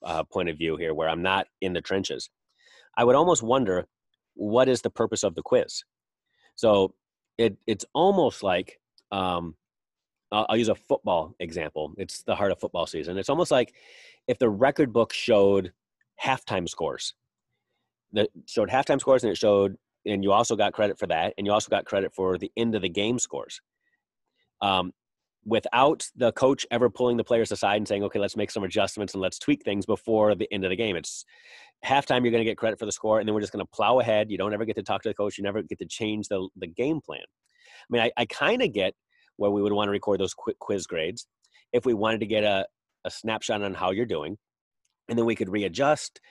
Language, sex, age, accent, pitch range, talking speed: English, male, 30-49, American, 100-120 Hz, 220 wpm